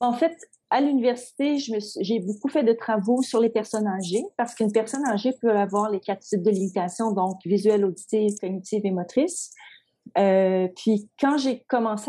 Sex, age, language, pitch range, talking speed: female, 40-59, French, 195-235 Hz, 190 wpm